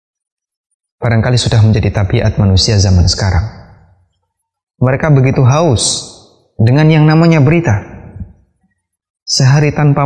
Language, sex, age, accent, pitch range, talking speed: Indonesian, male, 20-39, native, 95-150 Hz, 95 wpm